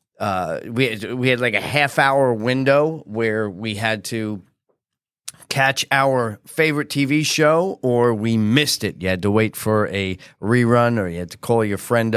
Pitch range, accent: 100-125 Hz, American